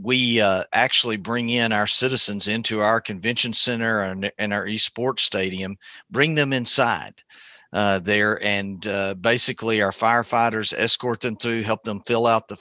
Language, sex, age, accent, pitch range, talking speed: English, male, 50-69, American, 105-120 Hz, 160 wpm